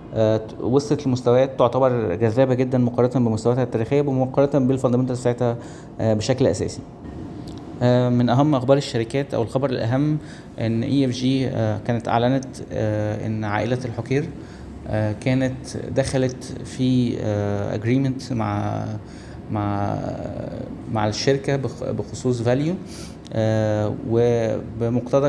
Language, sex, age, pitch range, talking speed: Arabic, male, 20-39, 110-130 Hz, 95 wpm